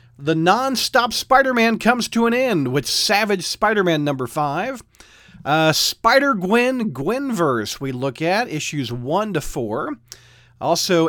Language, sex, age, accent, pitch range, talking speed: English, male, 40-59, American, 130-210 Hz, 145 wpm